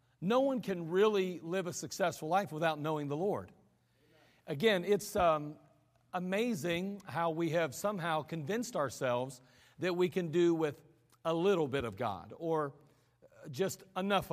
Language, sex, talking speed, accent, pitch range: English, male, 145 wpm, American, 150-195 Hz